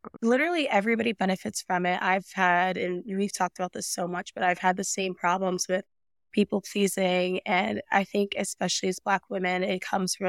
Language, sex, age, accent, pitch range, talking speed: English, female, 20-39, American, 180-200 Hz, 190 wpm